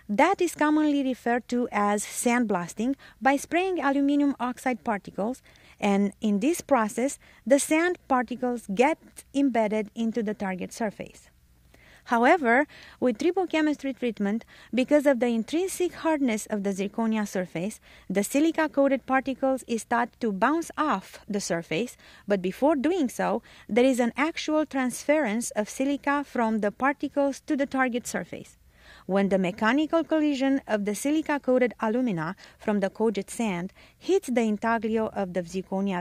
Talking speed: 145 wpm